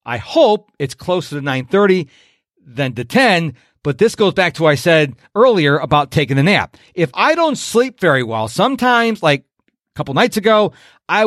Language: English